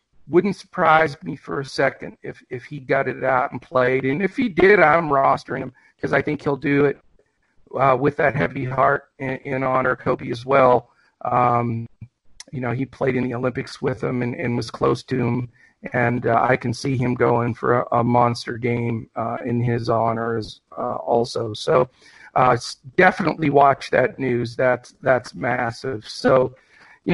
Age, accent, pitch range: 50-69, American, 125-165 Hz